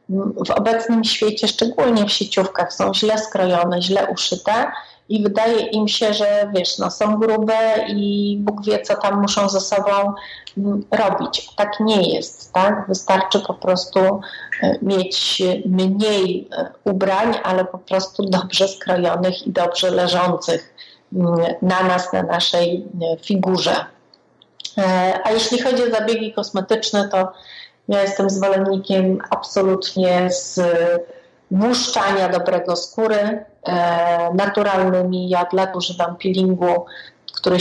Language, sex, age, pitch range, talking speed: Polish, female, 30-49, 175-205 Hz, 115 wpm